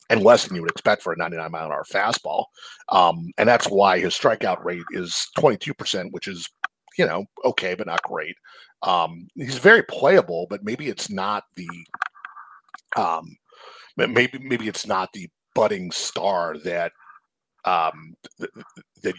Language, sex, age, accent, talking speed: English, male, 40-59, American, 165 wpm